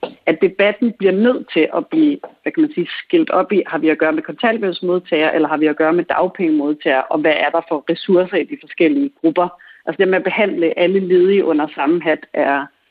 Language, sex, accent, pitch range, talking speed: Danish, female, native, 165-255 Hz, 225 wpm